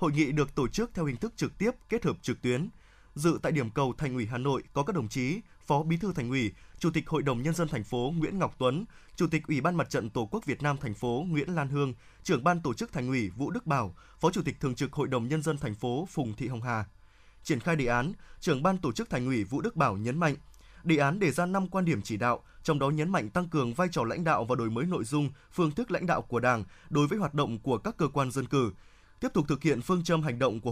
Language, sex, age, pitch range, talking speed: Vietnamese, male, 20-39, 125-165 Hz, 285 wpm